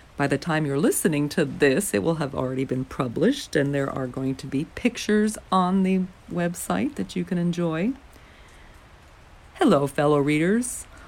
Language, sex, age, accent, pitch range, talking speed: English, female, 50-69, American, 130-175 Hz, 160 wpm